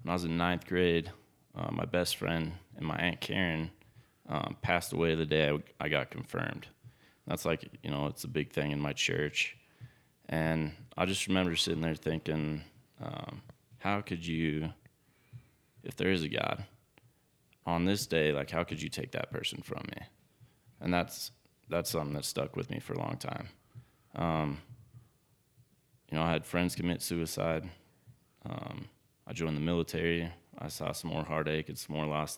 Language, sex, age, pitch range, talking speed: English, male, 20-39, 80-110 Hz, 180 wpm